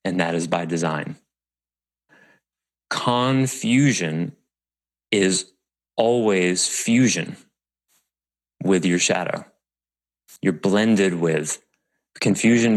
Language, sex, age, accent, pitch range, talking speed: English, male, 30-49, American, 80-100 Hz, 75 wpm